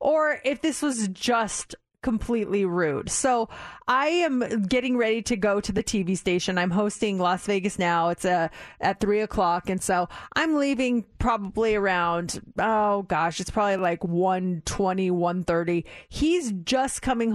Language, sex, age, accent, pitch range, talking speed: English, female, 30-49, American, 185-260 Hz, 160 wpm